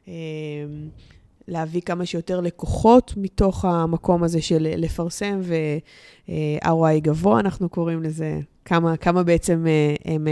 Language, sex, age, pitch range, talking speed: Hebrew, female, 20-39, 155-185 Hz, 105 wpm